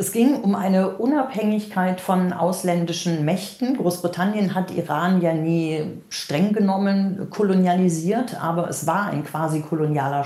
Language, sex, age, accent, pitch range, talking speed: German, female, 50-69, German, 150-185 Hz, 130 wpm